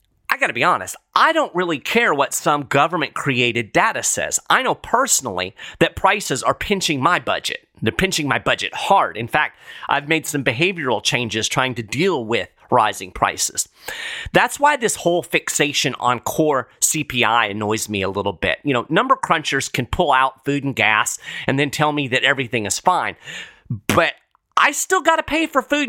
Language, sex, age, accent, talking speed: English, male, 40-59, American, 185 wpm